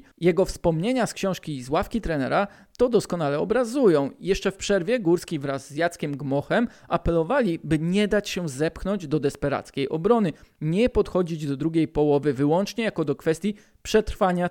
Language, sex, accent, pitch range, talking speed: Polish, male, native, 155-210 Hz, 155 wpm